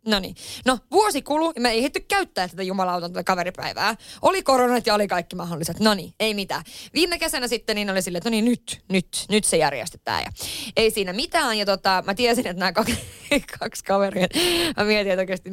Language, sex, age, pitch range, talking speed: Finnish, female, 20-39, 185-245 Hz, 195 wpm